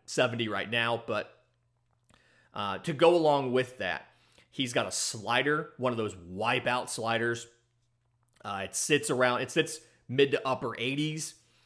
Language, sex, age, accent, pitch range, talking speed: English, male, 30-49, American, 115-140 Hz, 150 wpm